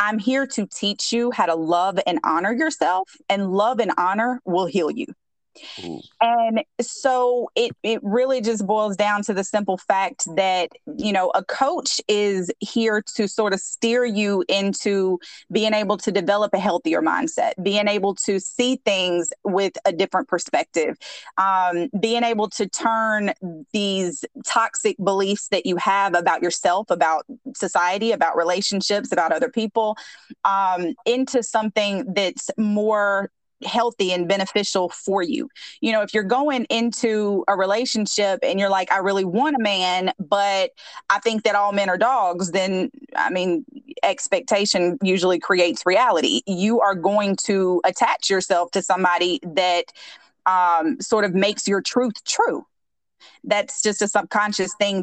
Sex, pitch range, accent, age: female, 190-225 Hz, American, 30-49